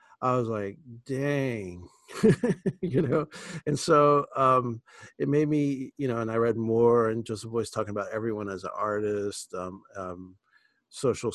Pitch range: 100-125 Hz